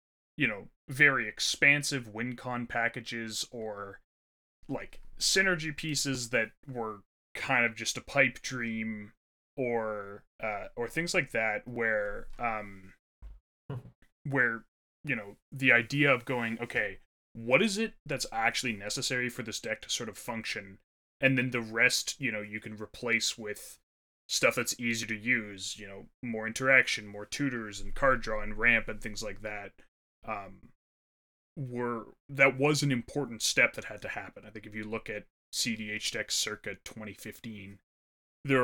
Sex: male